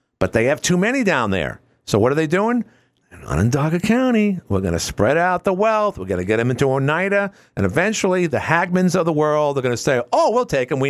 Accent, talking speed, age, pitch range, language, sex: American, 250 wpm, 50-69, 120-190 Hz, English, male